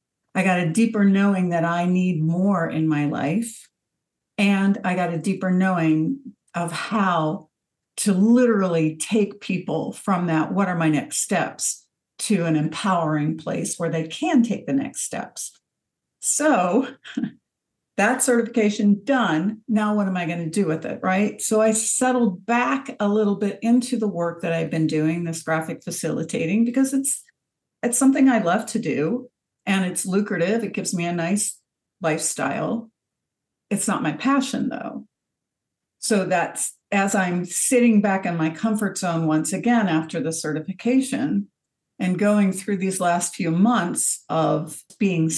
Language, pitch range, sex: English, 170-235 Hz, female